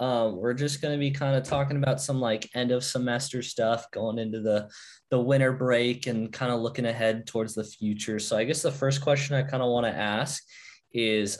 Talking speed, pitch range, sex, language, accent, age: 225 wpm, 100-130 Hz, male, English, American, 20-39